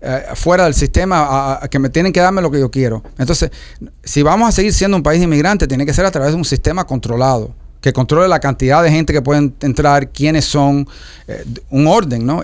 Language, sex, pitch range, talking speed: Spanish, male, 135-180 Hz, 225 wpm